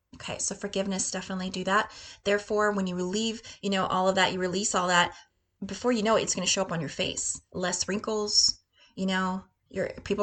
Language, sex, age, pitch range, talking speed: English, female, 20-39, 185-220 Hz, 215 wpm